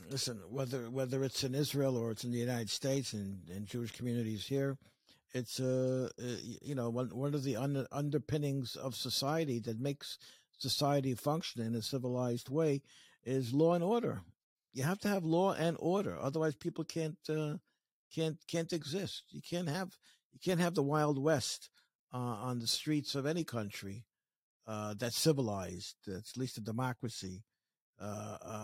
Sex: male